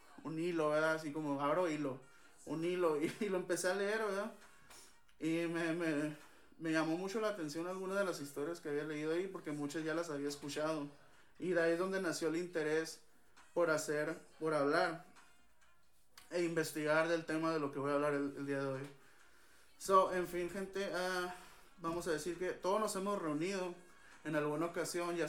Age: 20-39